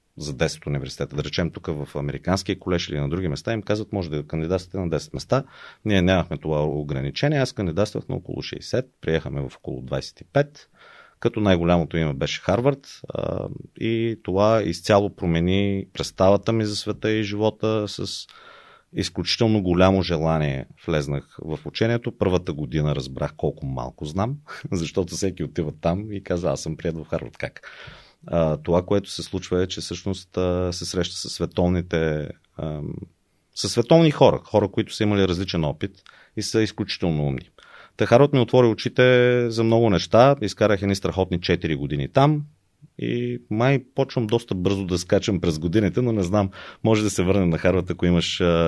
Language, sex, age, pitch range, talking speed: Bulgarian, male, 30-49, 80-110 Hz, 160 wpm